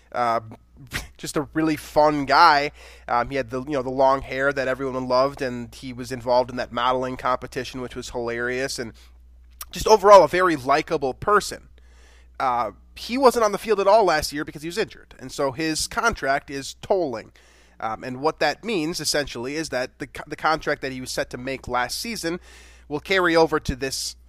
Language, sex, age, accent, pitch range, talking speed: English, male, 20-39, American, 125-165 Hz, 200 wpm